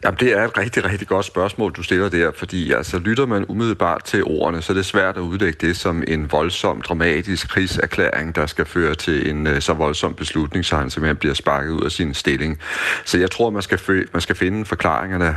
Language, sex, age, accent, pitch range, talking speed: Danish, male, 40-59, native, 75-90 Hz, 220 wpm